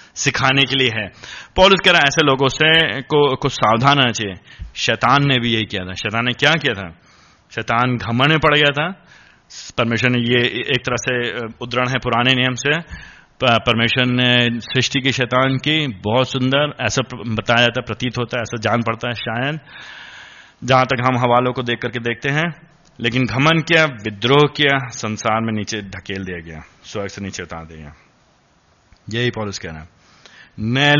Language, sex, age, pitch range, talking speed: Hindi, male, 30-49, 115-145 Hz, 180 wpm